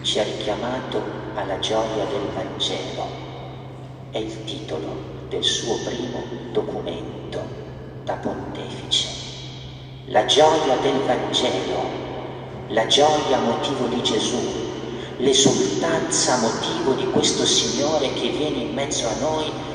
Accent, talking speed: native, 105 wpm